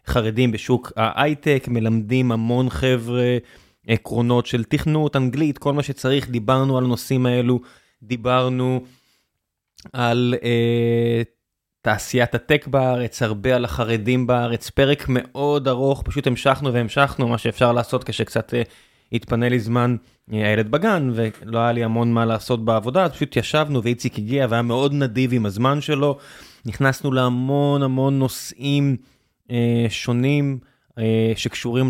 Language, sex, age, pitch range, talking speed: Hebrew, male, 20-39, 115-135 Hz, 125 wpm